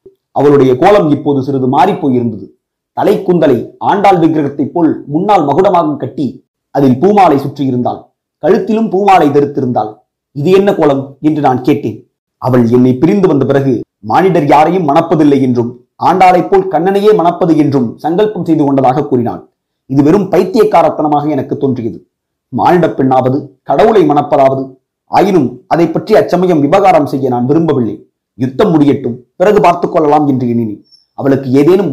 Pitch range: 135-180 Hz